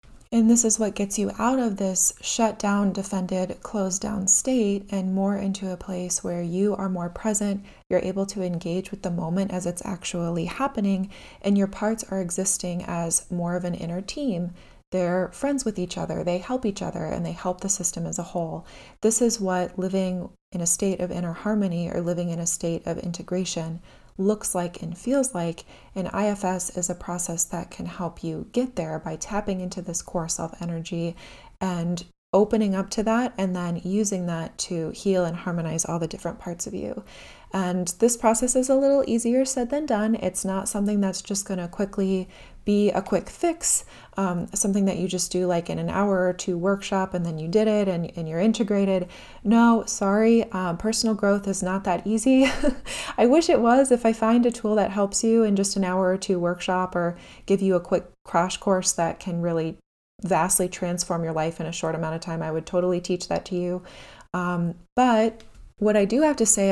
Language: English